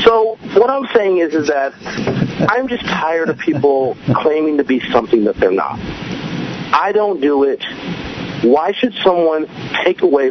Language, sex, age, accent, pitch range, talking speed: English, male, 40-59, American, 135-230 Hz, 165 wpm